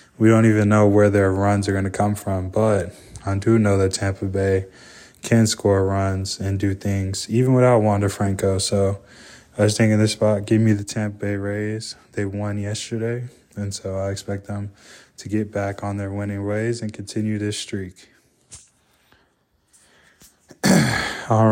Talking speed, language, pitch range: 170 wpm, English, 100-110 Hz